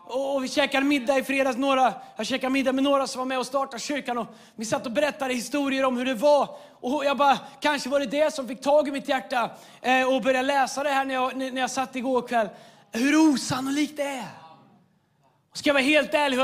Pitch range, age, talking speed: 265-315 Hz, 30-49, 230 wpm